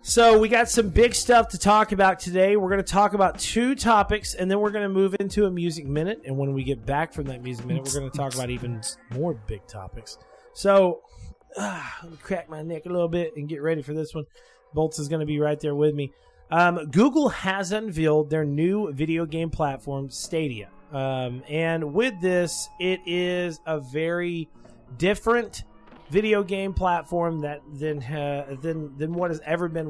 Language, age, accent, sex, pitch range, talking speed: English, 30-49, American, male, 145-195 Hz, 205 wpm